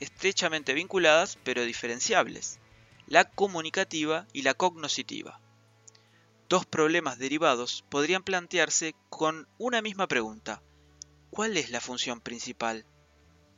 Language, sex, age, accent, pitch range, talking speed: Spanish, male, 20-39, Argentinian, 115-160 Hz, 100 wpm